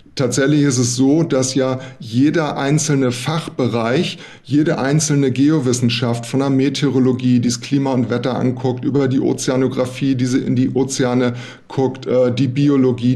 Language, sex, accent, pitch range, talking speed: German, male, German, 130-150 Hz, 145 wpm